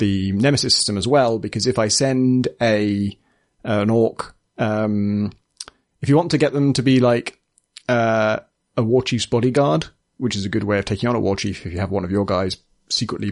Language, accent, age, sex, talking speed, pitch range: English, British, 30-49, male, 205 wpm, 100-125 Hz